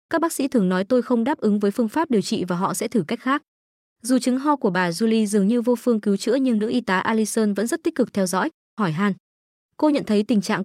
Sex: female